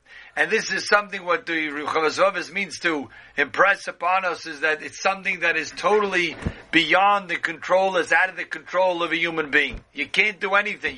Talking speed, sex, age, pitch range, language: 190 wpm, male, 50-69, 150-195 Hz, English